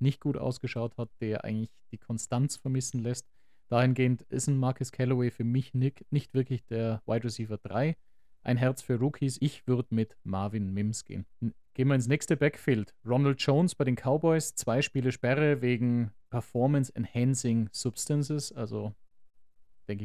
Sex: male